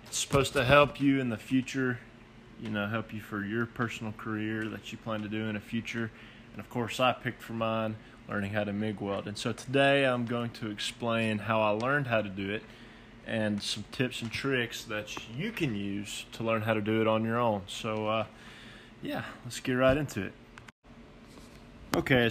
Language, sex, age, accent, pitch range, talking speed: English, male, 20-39, American, 110-125 Hz, 205 wpm